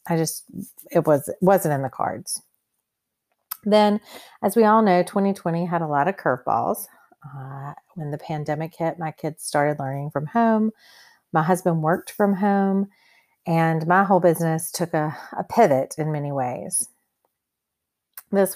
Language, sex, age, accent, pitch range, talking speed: English, female, 40-59, American, 155-210 Hz, 150 wpm